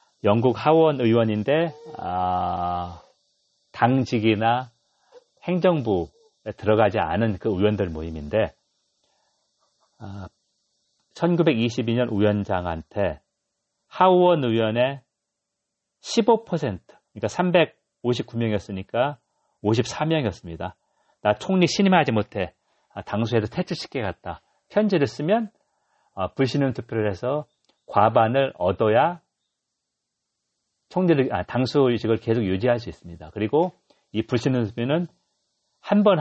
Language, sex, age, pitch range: Korean, male, 40-59, 100-150 Hz